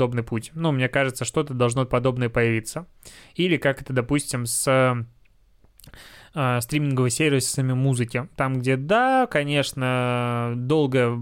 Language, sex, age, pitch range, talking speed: Russian, male, 20-39, 120-140 Hz, 125 wpm